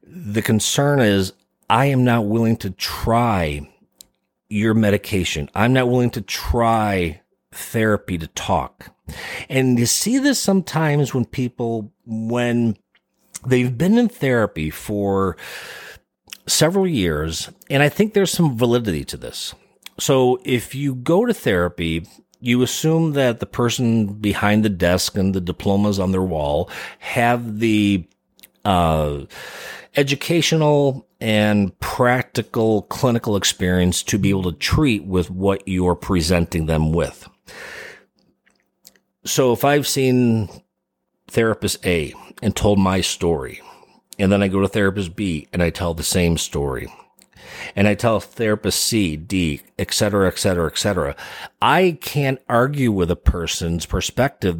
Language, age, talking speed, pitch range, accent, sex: English, 40-59, 135 wpm, 95-125 Hz, American, male